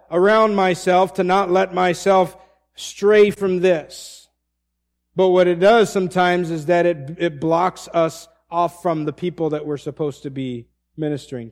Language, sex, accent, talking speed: English, male, American, 155 wpm